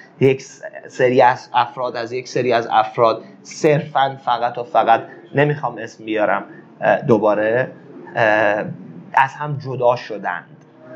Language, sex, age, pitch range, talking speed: Persian, male, 30-49, 140-175 Hz, 115 wpm